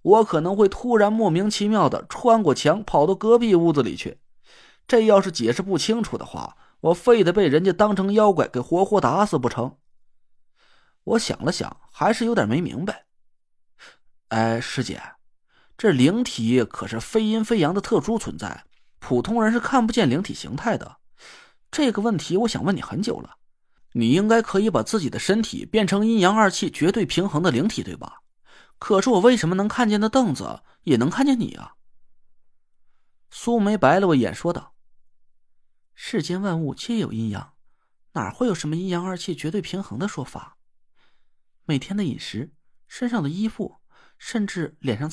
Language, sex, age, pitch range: Chinese, male, 30-49, 170-225 Hz